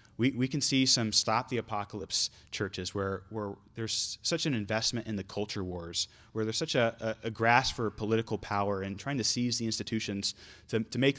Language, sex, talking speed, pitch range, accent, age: English, male, 200 wpm, 100-120 Hz, American, 30-49